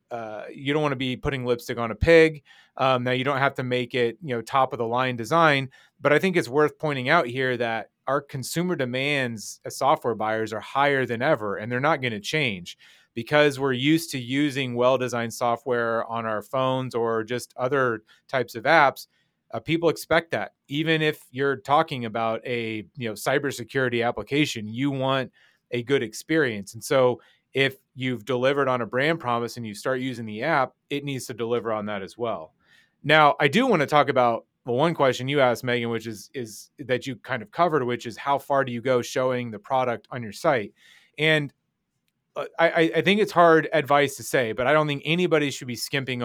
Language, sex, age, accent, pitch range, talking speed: English, male, 30-49, American, 120-150 Hz, 210 wpm